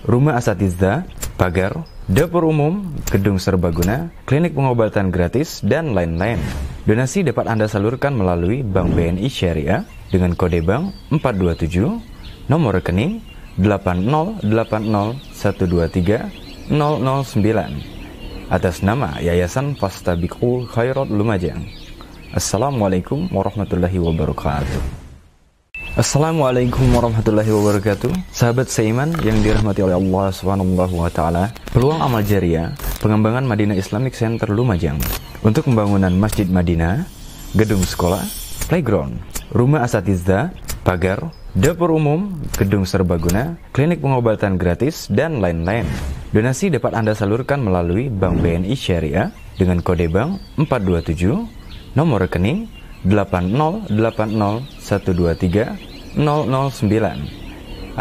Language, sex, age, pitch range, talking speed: Indonesian, male, 20-39, 90-120 Hz, 90 wpm